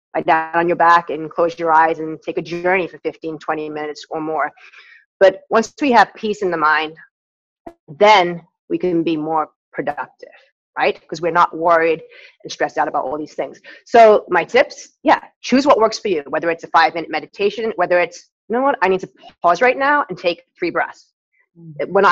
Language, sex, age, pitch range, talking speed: English, female, 30-49, 155-205 Hz, 205 wpm